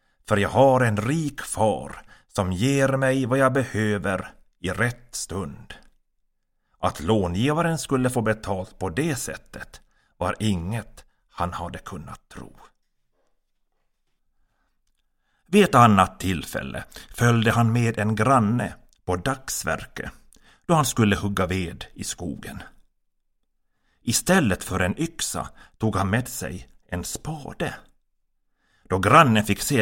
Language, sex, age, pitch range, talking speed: Swedish, male, 60-79, 100-130 Hz, 125 wpm